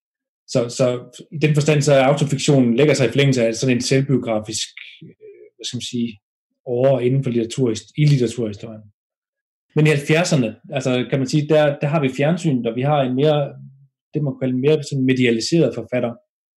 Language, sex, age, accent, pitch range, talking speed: Danish, male, 30-49, native, 115-145 Hz, 180 wpm